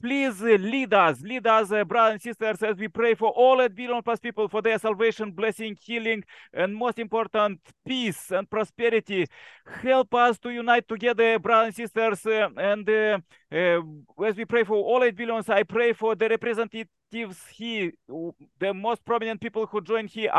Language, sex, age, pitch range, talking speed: English, male, 40-59, 210-235 Hz, 180 wpm